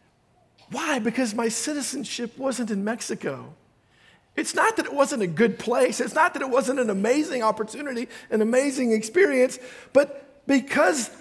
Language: English